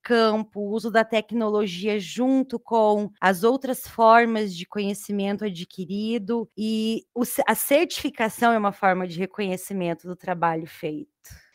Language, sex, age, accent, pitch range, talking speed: Portuguese, female, 20-39, Brazilian, 190-230 Hz, 125 wpm